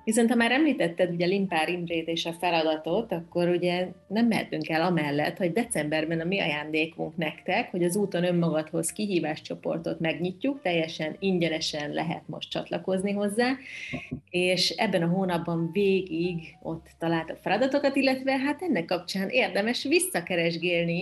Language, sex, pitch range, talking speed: Hungarian, female, 160-195 Hz, 135 wpm